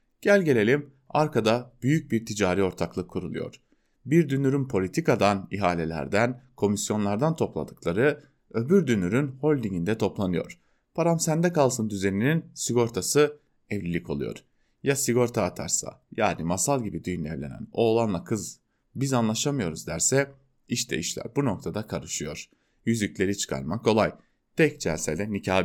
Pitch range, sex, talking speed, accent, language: 95-135 Hz, male, 115 wpm, Turkish, German